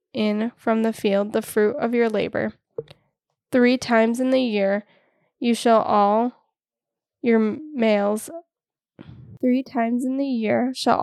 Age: 10-29